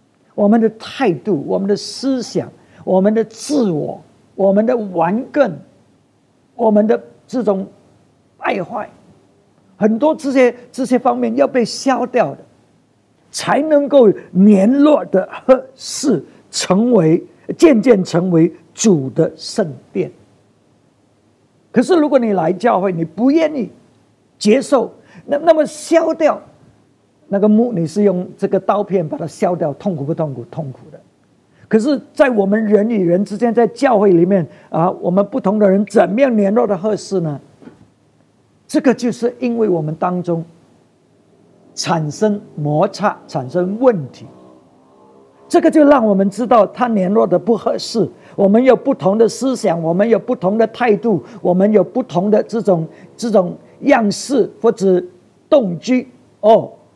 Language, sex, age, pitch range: English, male, 50-69, 180-245 Hz